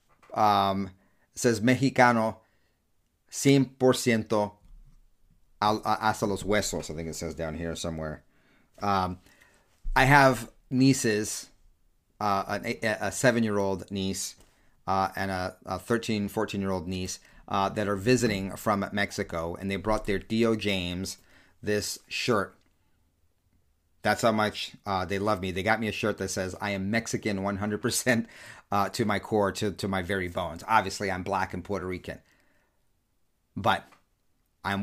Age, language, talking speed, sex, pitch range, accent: 30-49, English, 145 wpm, male, 95-110 Hz, American